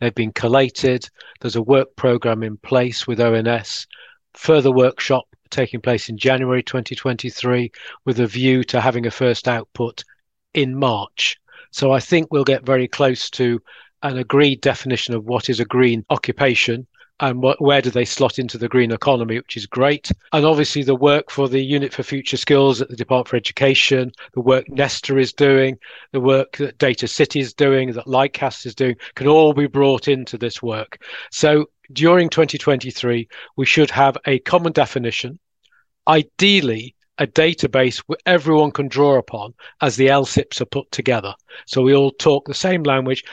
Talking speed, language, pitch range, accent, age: 175 wpm, English, 125-145 Hz, British, 40-59